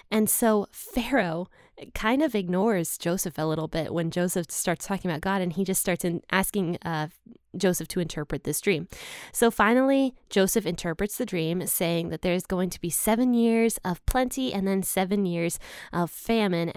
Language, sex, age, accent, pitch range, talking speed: English, female, 10-29, American, 170-220 Hz, 175 wpm